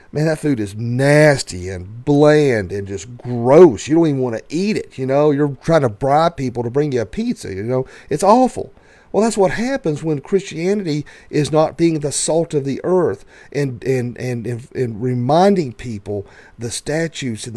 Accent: American